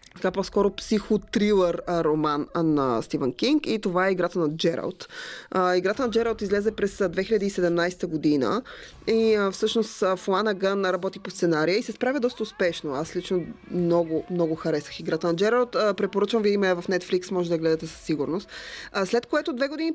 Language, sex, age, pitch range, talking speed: Bulgarian, female, 20-39, 175-210 Hz, 175 wpm